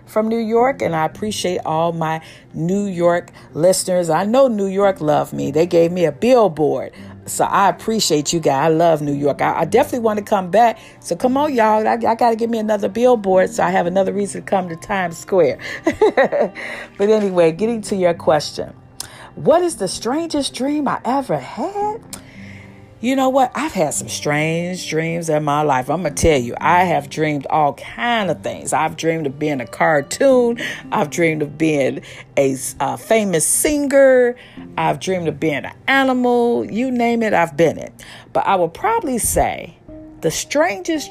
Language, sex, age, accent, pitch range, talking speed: English, female, 40-59, American, 155-240 Hz, 190 wpm